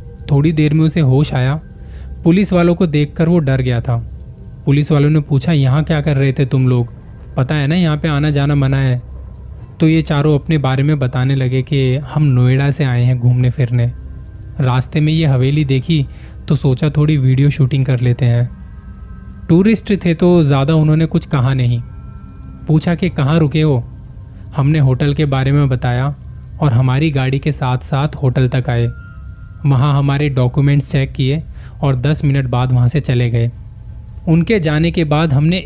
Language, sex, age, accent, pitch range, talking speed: Hindi, male, 20-39, native, 125-155 Hz, 185 wpm